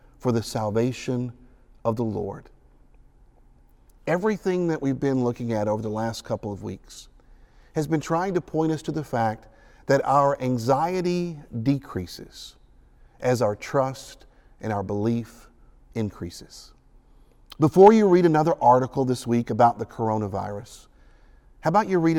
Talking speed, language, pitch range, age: 140 wpm, English, 110-155 Hz, 50-69